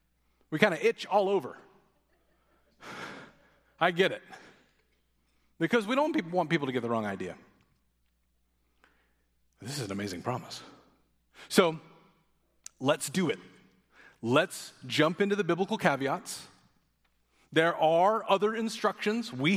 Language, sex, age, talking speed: English, male, 30-49, 120 wpm